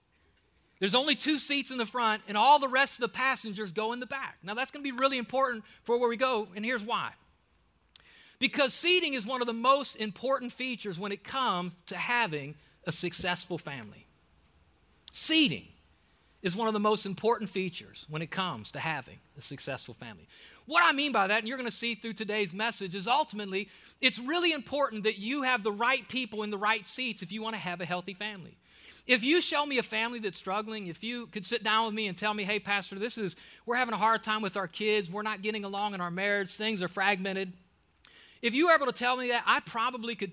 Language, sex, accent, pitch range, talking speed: English, male, American, 190-245 Hz, 225 wpm